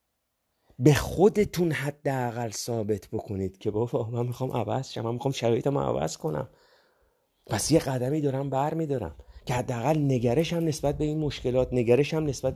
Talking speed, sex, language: 145 wpm, male, Persian